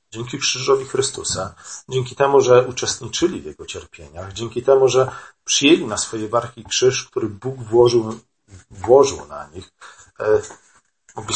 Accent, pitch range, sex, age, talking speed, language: native, 100-135 Hz, male, 40-59, 130 wpm, Polish